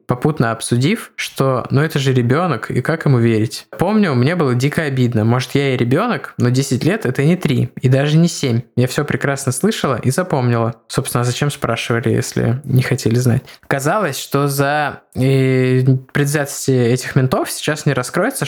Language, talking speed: Russian, 180 wpm